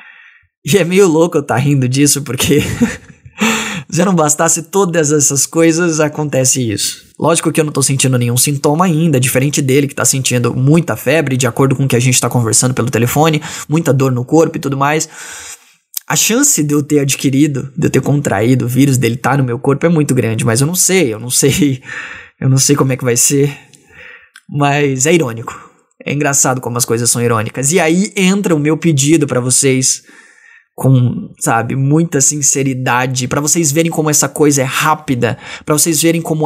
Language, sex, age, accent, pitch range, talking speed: Portuguese, male, 20-39, Brazilian, 125-160 Hz, 200 wpm